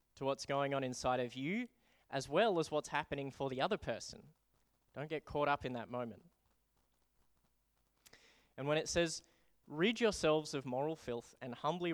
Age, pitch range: 20-39, 125-150 Hz